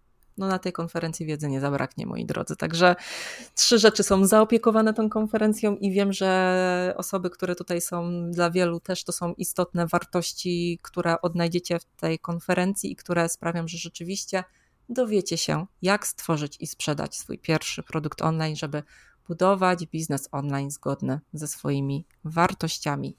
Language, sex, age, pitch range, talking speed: Polish, female, 30-49, 155-185 Hz, 150 wpm